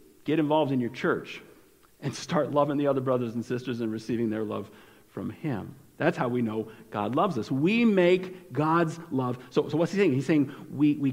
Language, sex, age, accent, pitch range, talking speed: English, male, 50-69, American, 120-165 Hz, 210 wpm